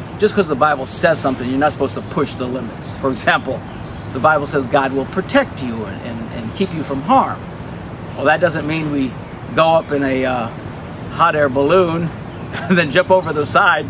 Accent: American